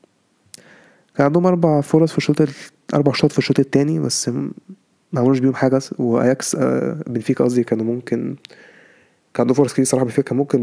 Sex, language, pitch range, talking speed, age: male, Arabic, 120-145 Hz, 145 wpm, 20-39